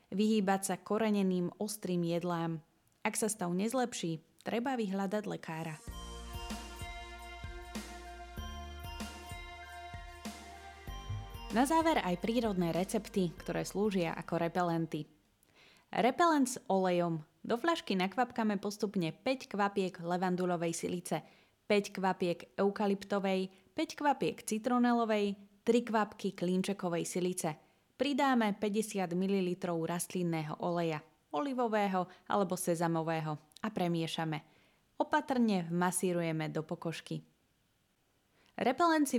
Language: Slovak